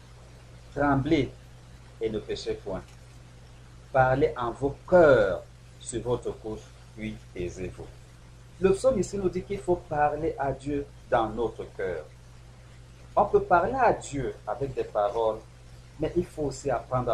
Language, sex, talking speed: French, male, 140 wpm